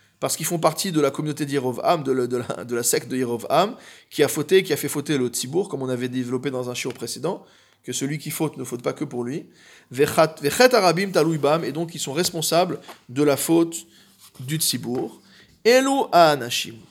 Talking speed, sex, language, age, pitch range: 190 wpm, male, French, 20-39, 130-160 Hz